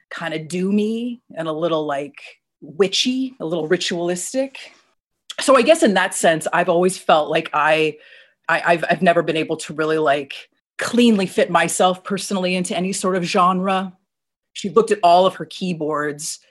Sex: female